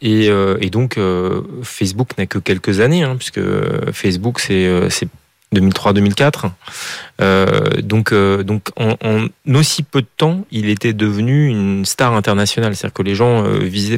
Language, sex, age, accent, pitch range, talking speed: French, male, 30-49, French, 100-130 Hz, 160 wpm